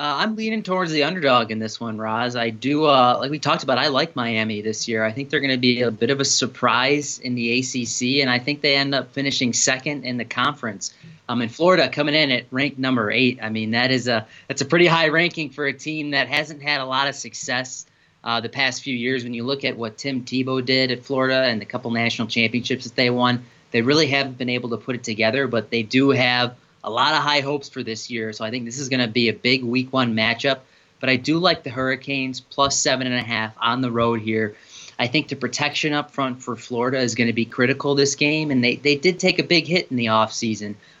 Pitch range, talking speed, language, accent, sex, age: 120-140 Hz, 245 wpm, English, American, male, 30-49